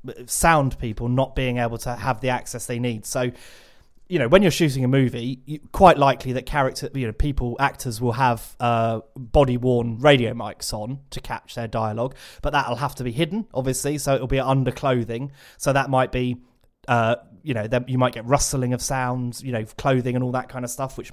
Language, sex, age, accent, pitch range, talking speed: English, male, 30-49, British, 120-135 Hz, 210 wpm